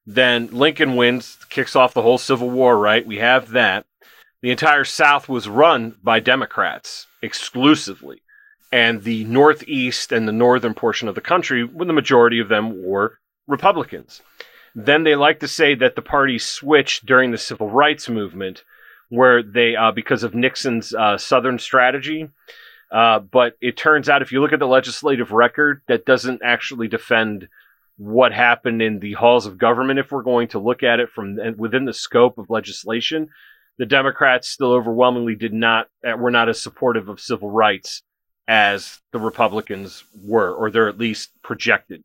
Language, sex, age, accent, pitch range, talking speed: English, male, 30-49, American, 110-130 Hz, 170 wpm